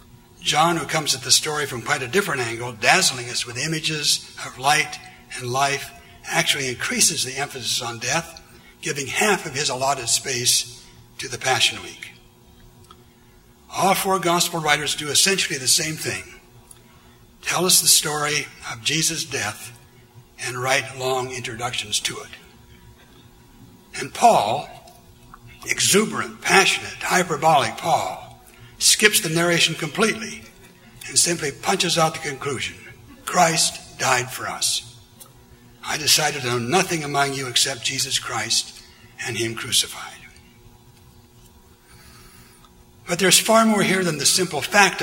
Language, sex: English, male